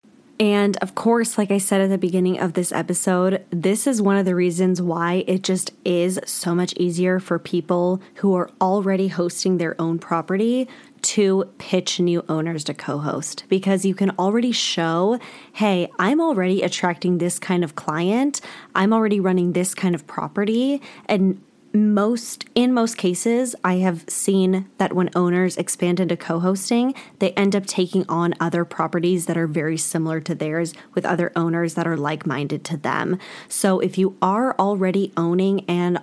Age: 10-29